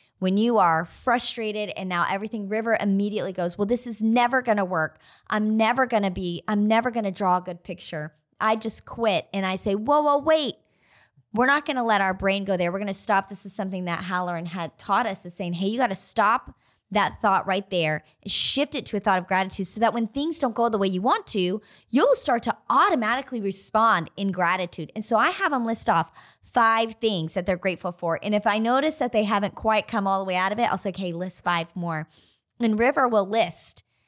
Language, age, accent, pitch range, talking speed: English, 20-39, American, 185-230 Hz, 225 wpm